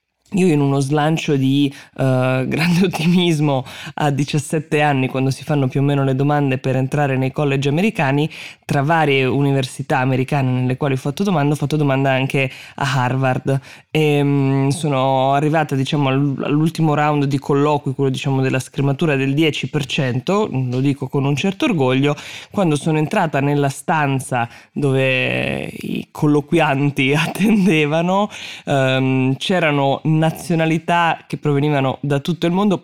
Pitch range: 135-160 Hz